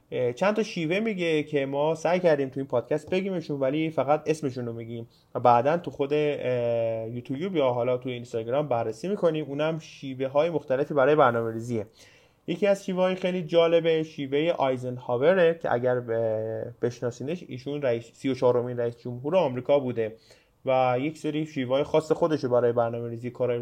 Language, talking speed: Persian, 160 wpm